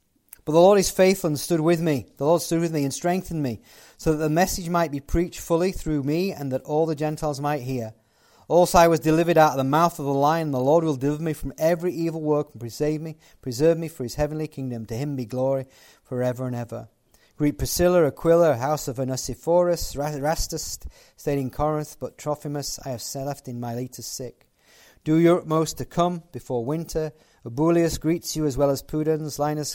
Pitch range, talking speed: 135-165 Hz, 210 wpm